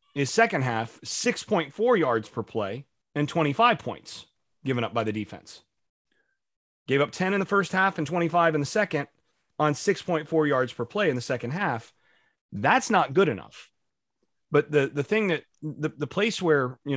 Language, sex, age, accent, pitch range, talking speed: English, male, 30-49, American, 120-155 Hz, 175 wpm